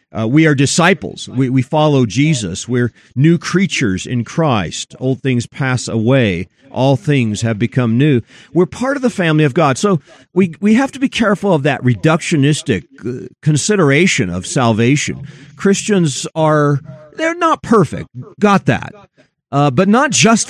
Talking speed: 155 wpm